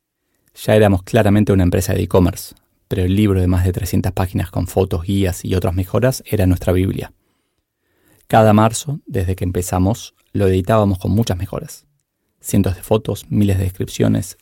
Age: 20-39